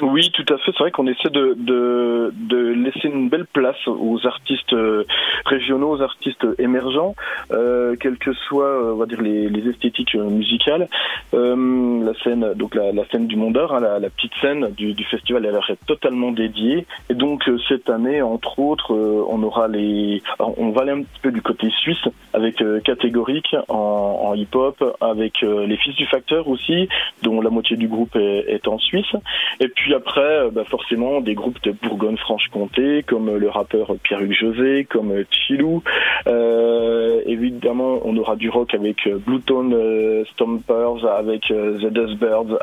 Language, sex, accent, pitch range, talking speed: French, male, French, 110-130 Hz, 180 wpm